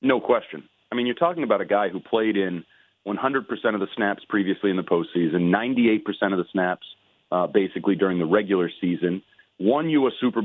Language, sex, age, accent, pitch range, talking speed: English, male, 40-59, American, 100-125 Hz, 195 wpm